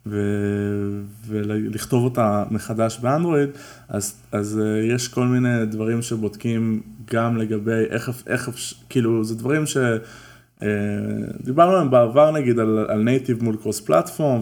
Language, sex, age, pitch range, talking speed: Hebrew, male, 20-39, 110-130 Hz, 115 wpm